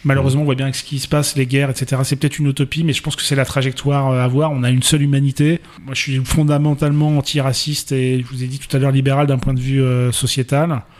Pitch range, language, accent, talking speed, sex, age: 125-140 Hz, French, French, 275 wpm, male, 30-49